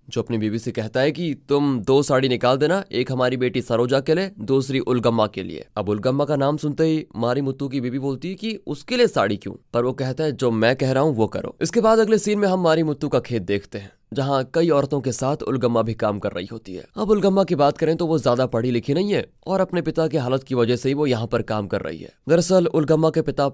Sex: male